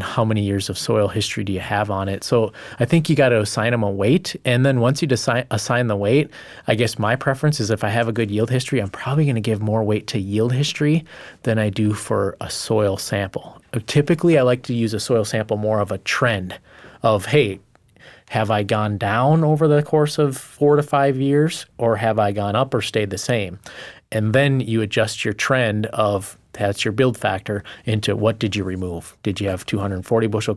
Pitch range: 100-120 Hz